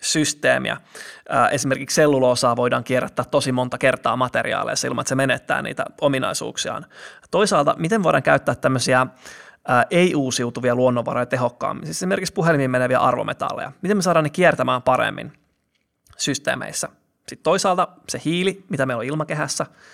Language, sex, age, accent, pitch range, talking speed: Finnish, male, 20-39, native, 130-160 Hz, 130 wpm